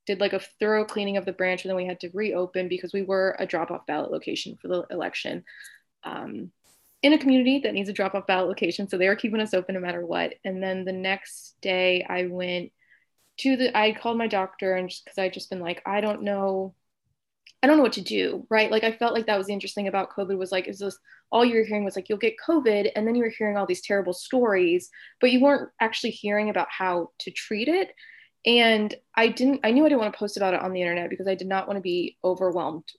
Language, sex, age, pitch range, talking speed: English, female, 20-39, 185-220 Hz, 250 wpm